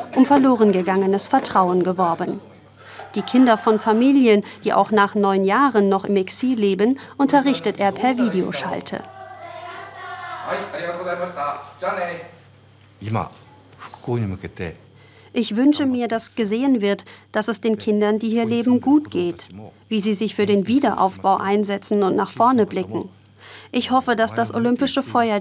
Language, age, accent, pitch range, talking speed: German, 40-59, German, 185-245 Hz, 130 wpm